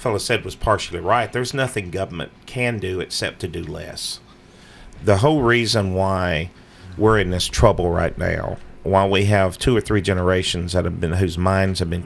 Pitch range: 95-110 Hz